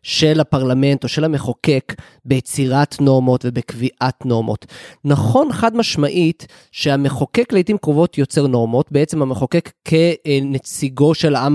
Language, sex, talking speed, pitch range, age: Hebrew, male, 115 wpm, 140-180 Hz, 20-39